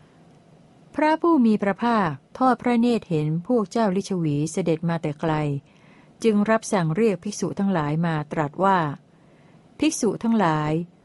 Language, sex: Thai, female